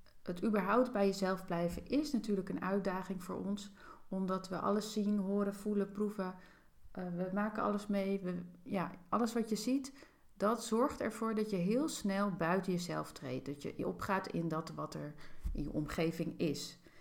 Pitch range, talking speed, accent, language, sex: 175-210 Hz, 165 wpm, Dutch, Dutch, female